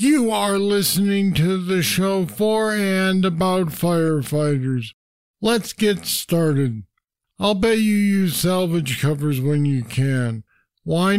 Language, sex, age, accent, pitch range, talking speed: English, male, 50-69, American, 165-195 Hz, 125 wpm